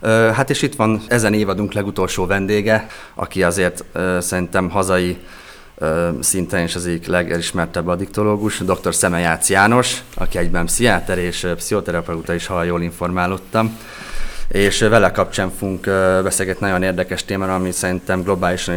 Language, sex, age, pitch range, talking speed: Hungarian, male, 30-49, 90-105 Hz, 130 wpm